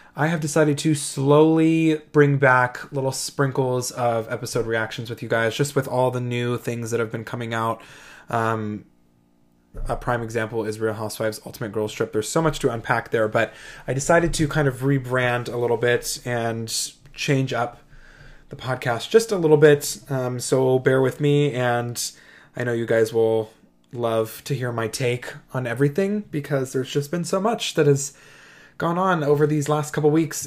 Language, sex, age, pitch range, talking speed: English, male, 20-39, 120-145 Hz, 185 wpm